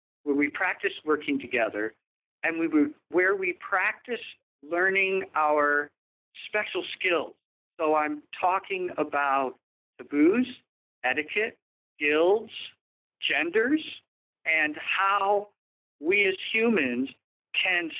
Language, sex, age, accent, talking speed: English, male, 50-69, American, 95 wpm